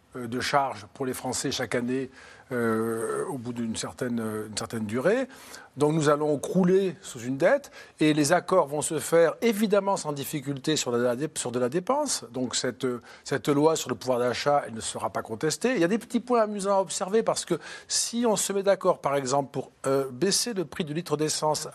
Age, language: 50-69, French